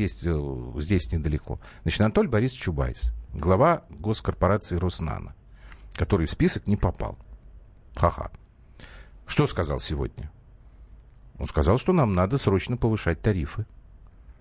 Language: Russian